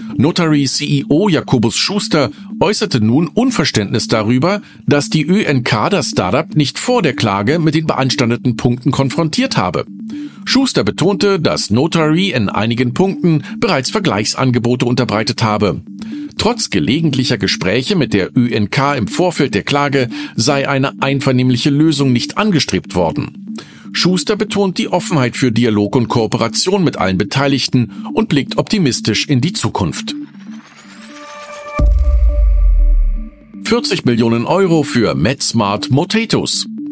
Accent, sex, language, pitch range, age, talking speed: German, male, German, 120-195 Hz, 50-69, 120 wpm